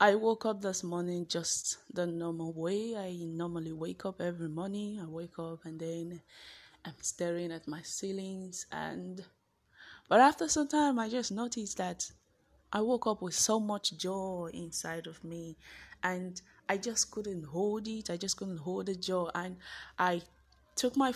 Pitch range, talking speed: 170-195 Hz, 170 wpm